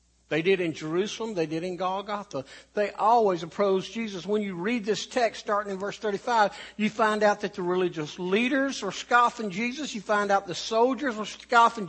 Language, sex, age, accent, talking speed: English, male, 60-79, American, 190 wpm